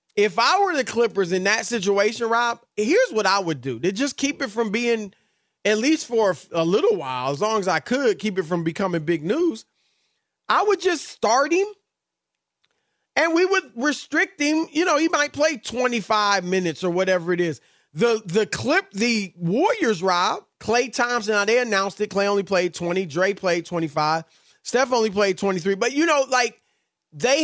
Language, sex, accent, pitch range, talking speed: English, male, American, 195-270 Hz, 190 wpm